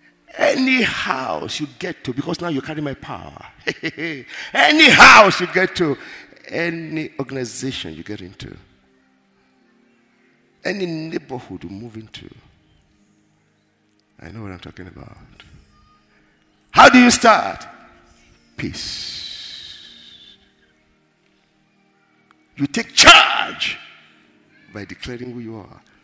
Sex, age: male, 50-69